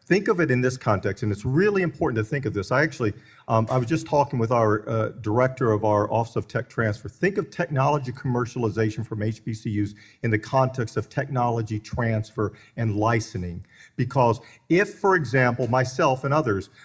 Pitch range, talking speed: 110-140 Hz, 185 wpm